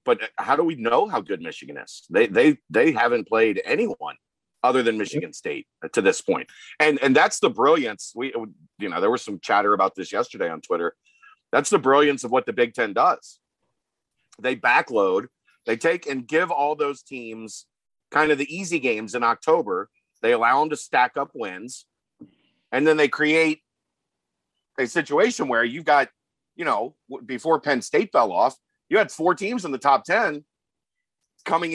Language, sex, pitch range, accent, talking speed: English, male, 125-155 Hz, American, 180 wpm